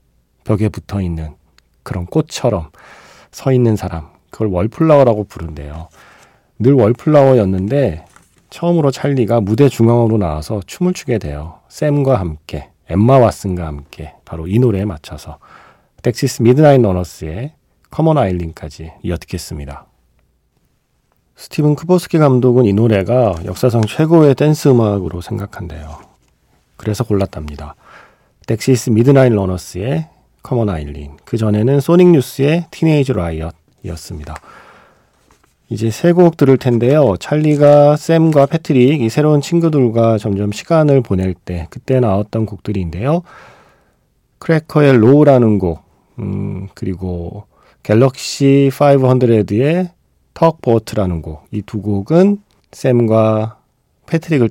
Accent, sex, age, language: native, male, 40-59, Korean